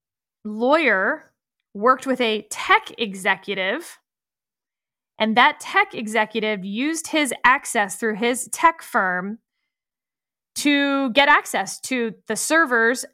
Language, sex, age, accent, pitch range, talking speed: English, female, 20-39, American, 215-280 Hz, 105 wpm